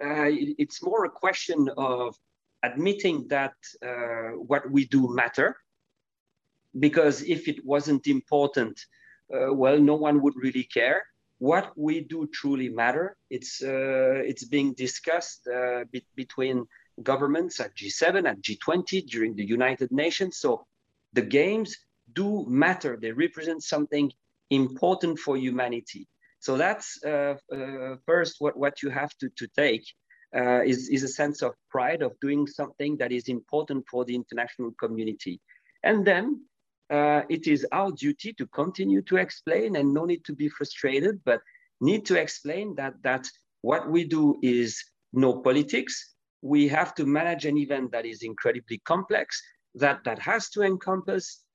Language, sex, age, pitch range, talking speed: English, male, 40-59, 130-160 Hz, 150 wpm